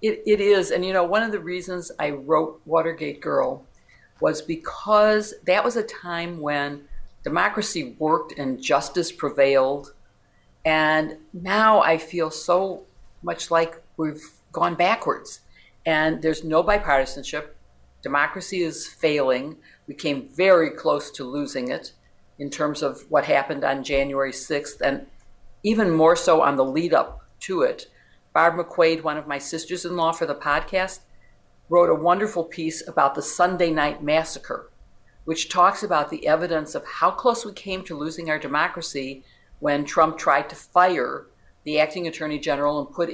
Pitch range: 145-180 Hz